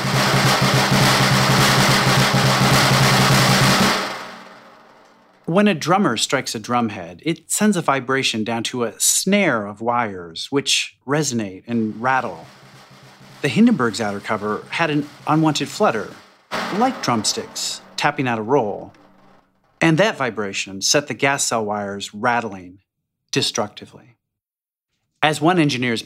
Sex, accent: male, American